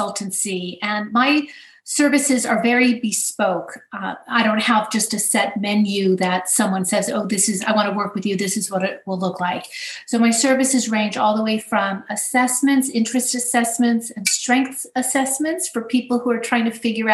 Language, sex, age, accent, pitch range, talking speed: English, female, 40-59, American, 205-245 Hz, 195 wpm